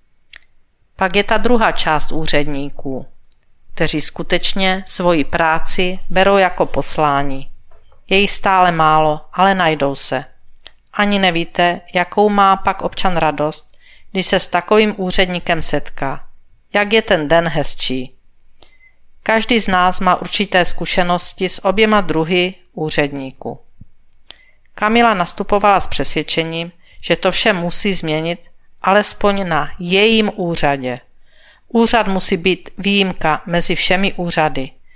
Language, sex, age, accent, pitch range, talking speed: Czech, female, 50-69, native, 160-195 Hz, 115 wpm